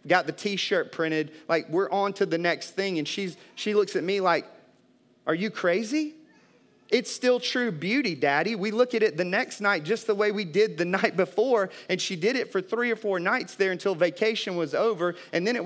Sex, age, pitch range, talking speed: male, 30-49, 150-200 Hz, 220 wpm